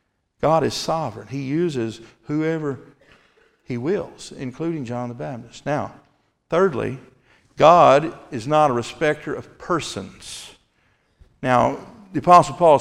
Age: 50-69